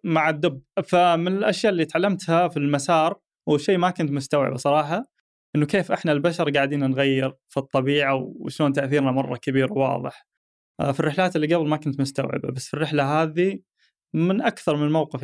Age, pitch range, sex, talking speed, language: 20-39, 140-165 Hz, male, 160 wpm, Arabic